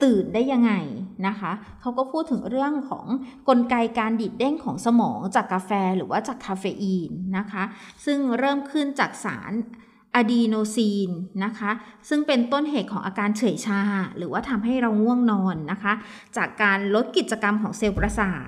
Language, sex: Thai, female